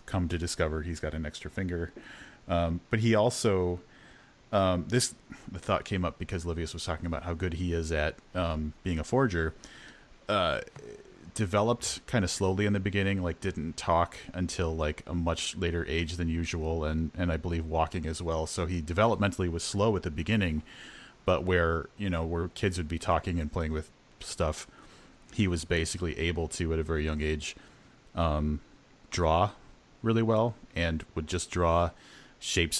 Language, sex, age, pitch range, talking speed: English, male, 30-49, 80-90 Hz, 180 wpm